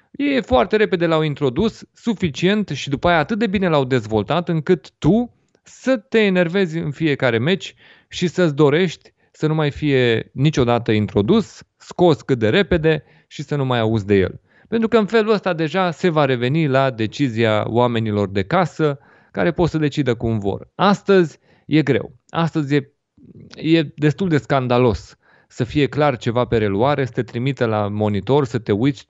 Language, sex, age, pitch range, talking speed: Romanian, male, 30-49, 120-170 Hz, 175 wpm